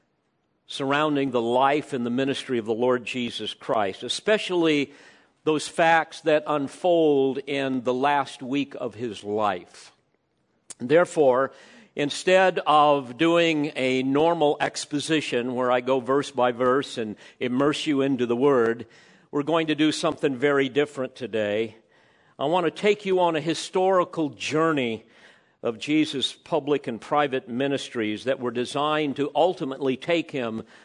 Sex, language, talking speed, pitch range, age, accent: male, English, 140 wpm, 125-155 Hz, 50-69, American